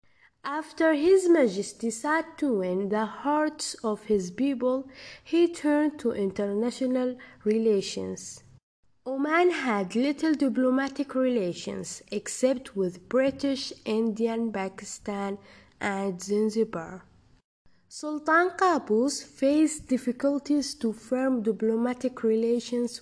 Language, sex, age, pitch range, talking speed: English, female, 20-39, 210-285 Hz, 95 wpm